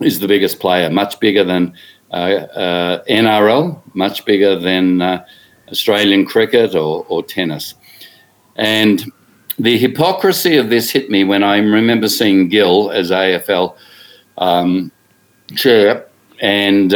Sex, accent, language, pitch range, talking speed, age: male, Australian, English, 100-125 Hz, 125 wpm, 50-69